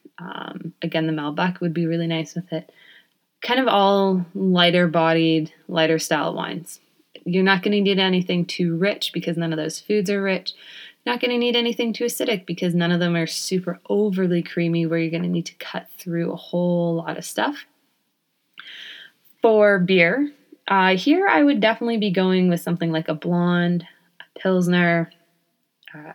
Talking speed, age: 175 wpm, 20-39